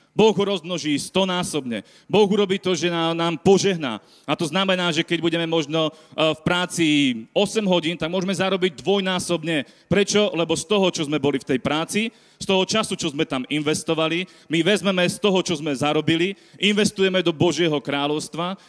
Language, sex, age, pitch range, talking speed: Slovak, male, 30-49, 155-190 Hz, 170 wpm